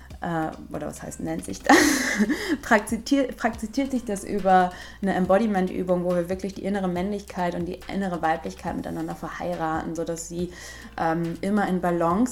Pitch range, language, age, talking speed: 165-200 Hz, German, 20-39, 145 wpm